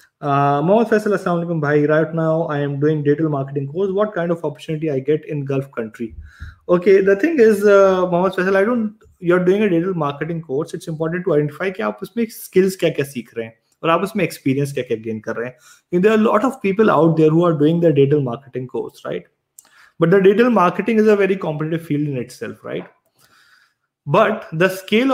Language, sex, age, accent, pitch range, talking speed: English, male, 20-39, Indian, 135-180 Hz, 175 wpm